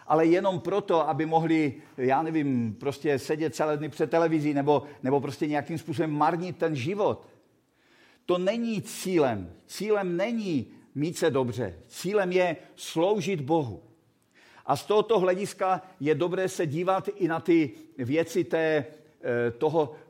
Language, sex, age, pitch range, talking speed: Czech, male, 50-69, 140-170 Hz, 140 wpm